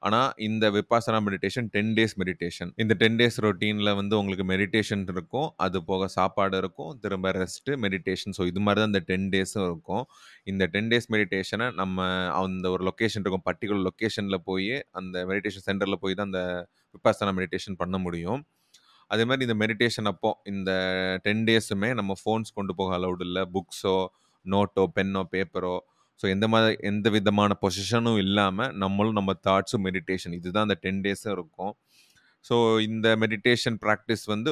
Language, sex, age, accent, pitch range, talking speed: Tamil, male, 30-49, native, 95-110 Hz, 160 wpm